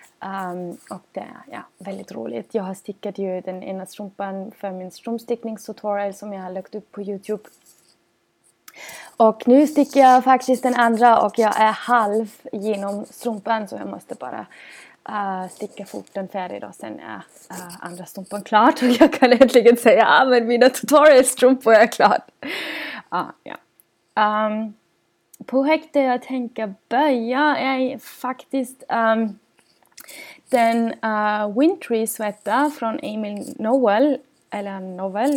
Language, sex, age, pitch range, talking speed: Swedish, female, 20-39, 205-255 Hz, 140 wpm